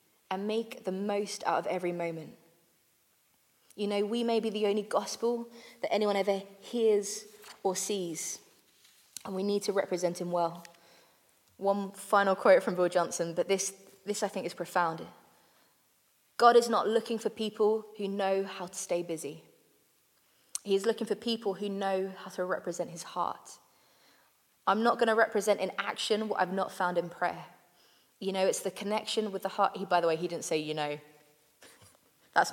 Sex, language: female, English